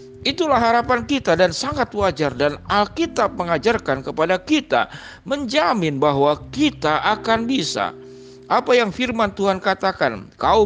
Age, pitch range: 50-69, 160-220 Hz